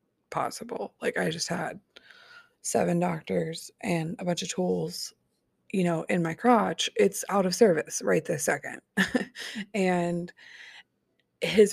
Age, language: 20-39, English